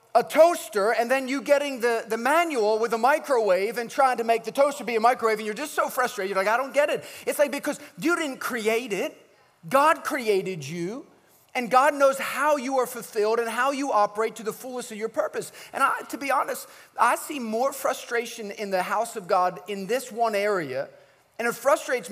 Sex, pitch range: male, 210-280 Hz